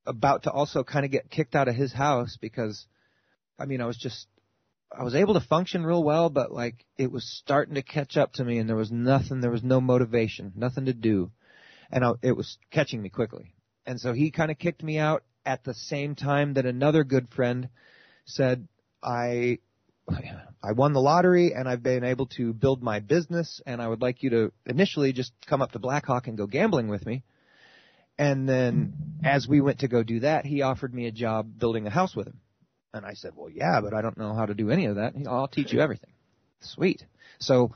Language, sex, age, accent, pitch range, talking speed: English, male, 30-49, American, 120-150 Hz, 220 wpm